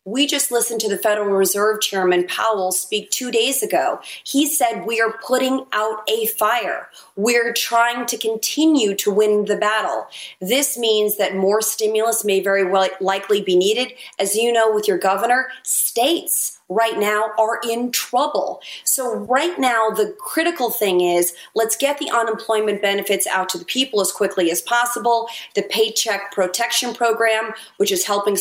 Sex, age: female, 30-49